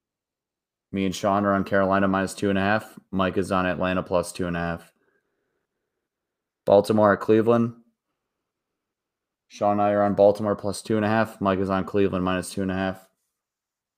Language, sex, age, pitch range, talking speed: English, male, 20-39, 95-105 Hz, 185 wpm